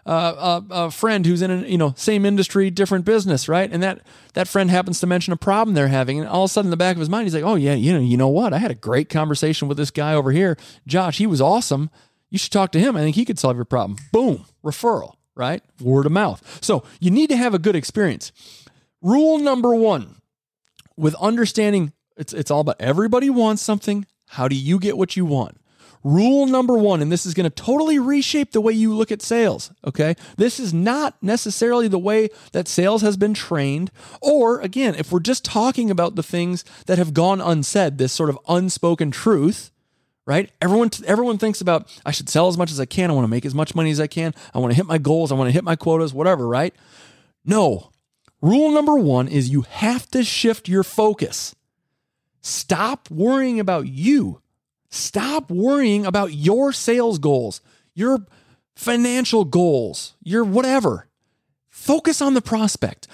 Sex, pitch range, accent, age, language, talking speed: male, 155-220 Hz, American, 40-59, English, 205 wpm